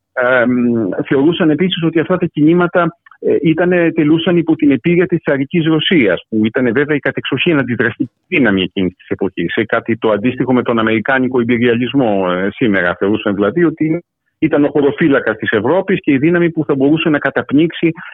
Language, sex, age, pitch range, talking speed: Greek, male, 50-69, 110-175 Hz, 170 wpm